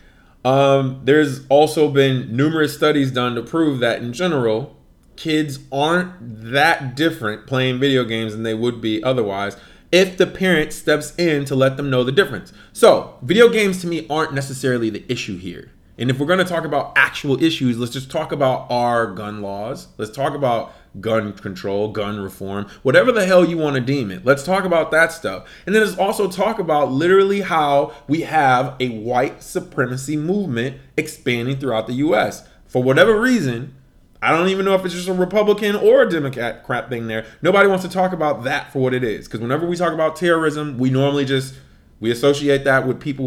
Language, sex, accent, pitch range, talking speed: English, male, American, 125-165 Hz, 195 wpm